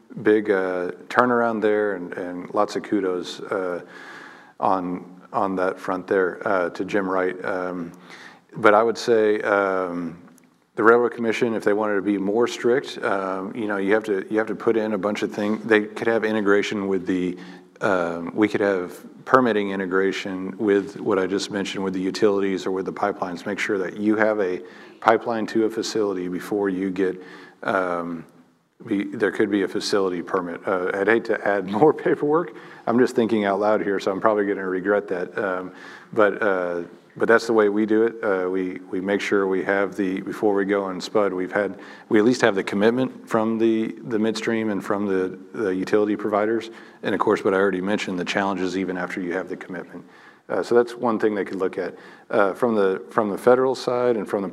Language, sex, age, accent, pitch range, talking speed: English, male, 40-59, American, 95-110 Hz, 210 wpm